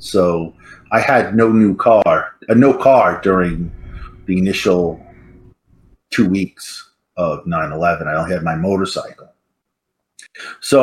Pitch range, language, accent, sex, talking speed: 90-115 Hz, English, American, male, 125 wpm